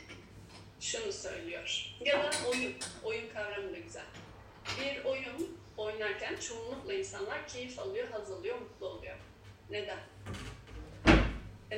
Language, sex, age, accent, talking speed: Turkish, female, 40-59, native, 105 wpm